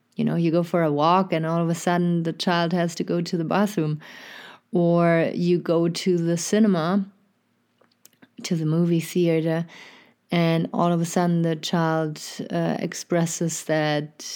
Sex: female